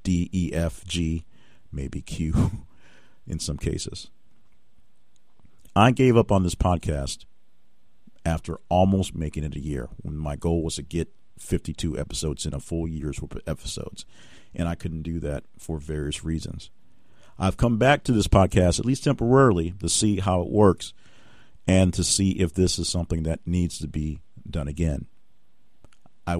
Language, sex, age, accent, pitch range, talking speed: English, male, 50-69, American, 80-95 Hz, 155 wpm